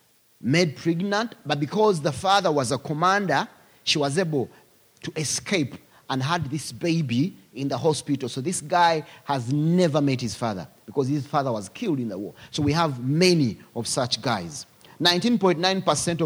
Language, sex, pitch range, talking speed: English, male, 130-175 Hz, 165 wpm